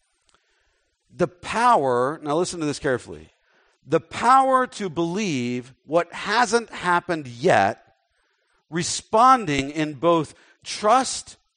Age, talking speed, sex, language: 50-69, 100 wpm, male, English